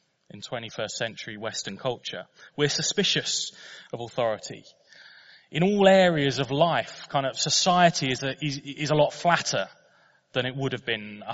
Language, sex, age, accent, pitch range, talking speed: English, male, 20-39, British, 130-175 Hz, 160 wpm